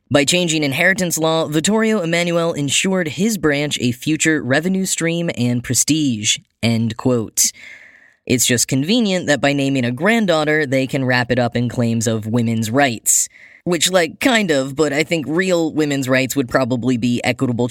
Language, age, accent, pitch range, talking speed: English, 10-29, American, 125-170 Hz, 165 wpm